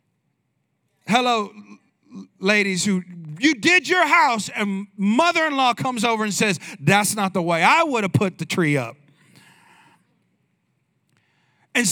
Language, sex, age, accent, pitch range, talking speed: English, male, 40-59, American, 195-295 Hz, 125 wpm